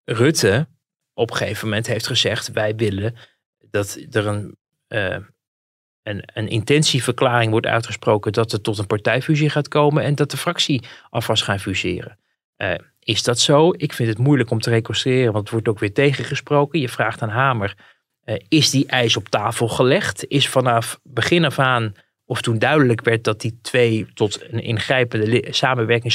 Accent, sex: Dutch, male